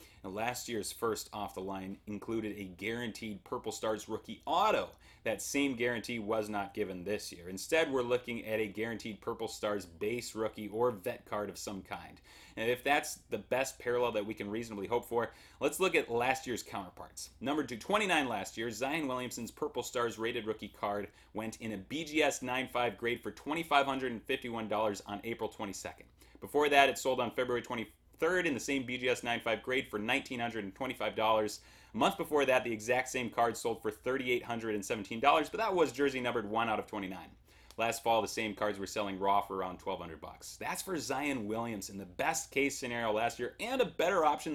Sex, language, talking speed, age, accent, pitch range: male, English, 185 wpm, 30-49, American, 105-125 Hz